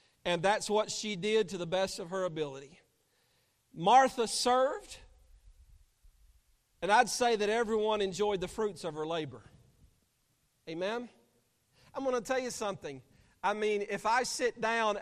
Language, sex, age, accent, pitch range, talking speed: English, male, 40-59, American, 190-235 Hz, 150 wpm